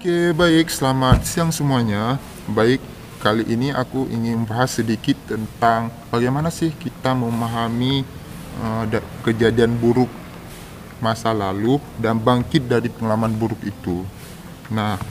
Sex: male